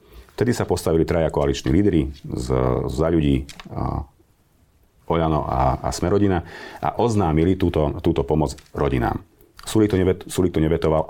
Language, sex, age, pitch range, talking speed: Slovak, male, 40-59, 70-85 Hz, 110 wpm